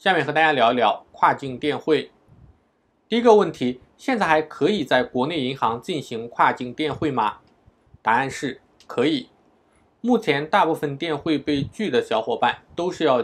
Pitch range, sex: 135-210 Hz, male